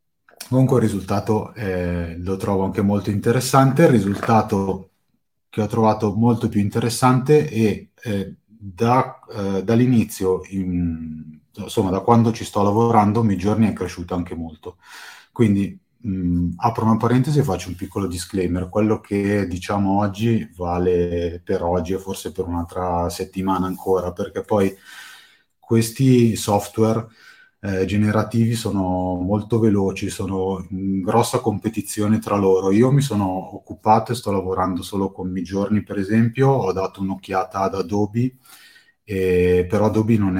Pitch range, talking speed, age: 95-110 Hz, 140 wpm, 30-49